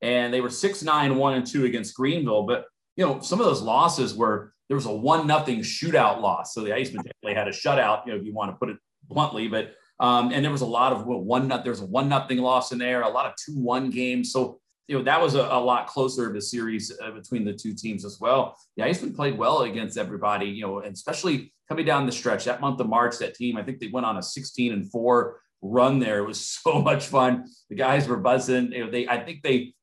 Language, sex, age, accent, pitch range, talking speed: English, male, 40-59, American, 115-130 Hz, 255 wpm